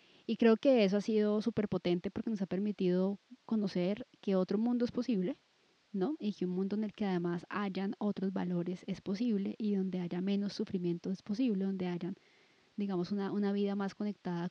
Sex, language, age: female, Spanish, 20-39